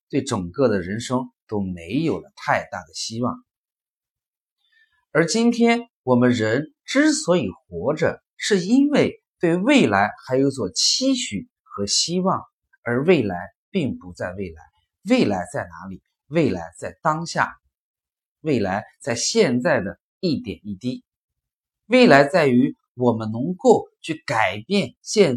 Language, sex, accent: Chinese, male, native